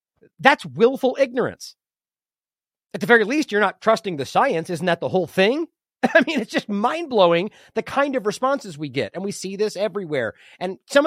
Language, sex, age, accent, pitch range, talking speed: English, male, 30-49, American, 175-240 Hz, 195 wpm